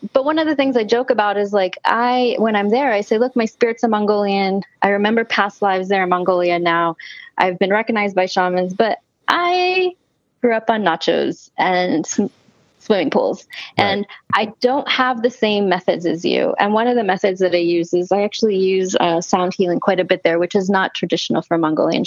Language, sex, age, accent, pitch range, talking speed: English, female, 20-39, American, 180-225 Hz, 210 wpm